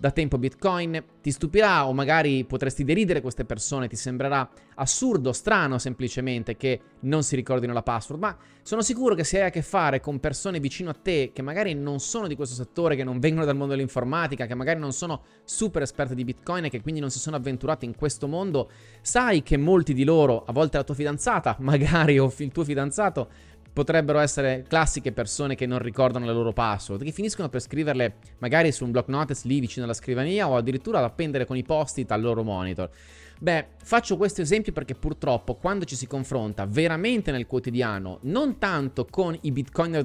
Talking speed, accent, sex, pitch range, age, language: 200 wpm, native, male, 130-165 Hz, 20-39, Italian